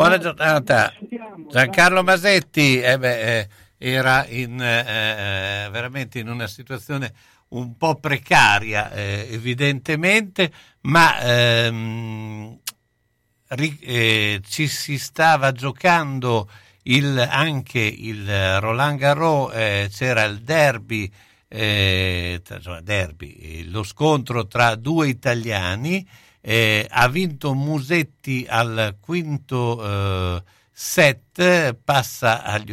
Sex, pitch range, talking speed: male, 100-140 Hz, 85 wpm